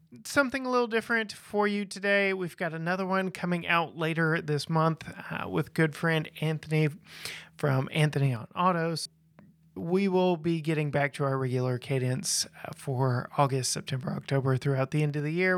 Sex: male